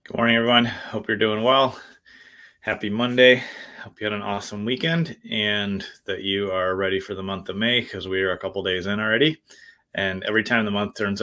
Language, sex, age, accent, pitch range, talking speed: English, male, 30-49, American, 95-115 Hz, 210 wpm